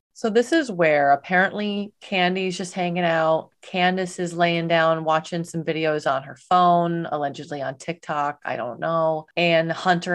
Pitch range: 145-180 Hz